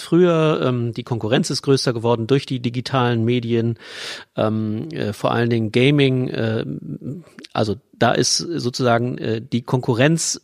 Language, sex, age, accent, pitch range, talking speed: German, male, 40-59, German, 120-145 Hz, 115 wpm